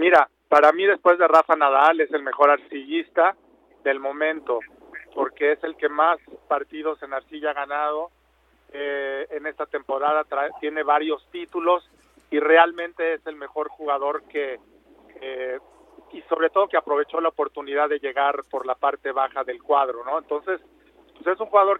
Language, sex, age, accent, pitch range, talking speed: Spanish, male, 40-59, Mexican, 150-175 Hz, 165 wpm